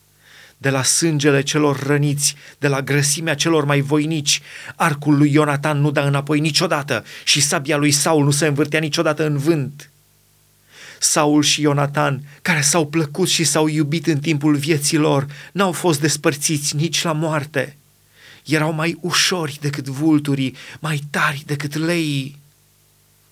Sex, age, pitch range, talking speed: male, 30-49, 145-165 Hz, 145 wpm